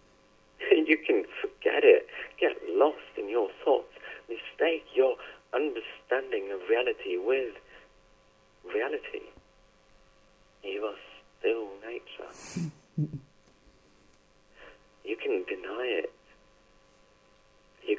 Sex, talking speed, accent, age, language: male, 85 wpm, British, 50-69, English